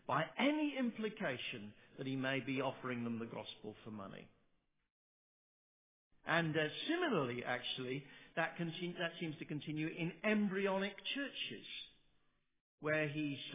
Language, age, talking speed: English, 50-69, 125 wpm